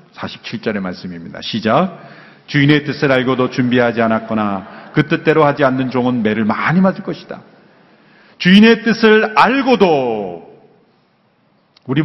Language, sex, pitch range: Korean, male, 125-165 Hz